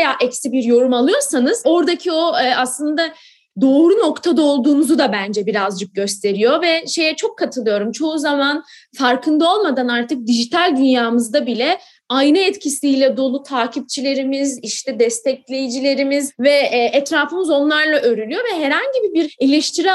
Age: 30-49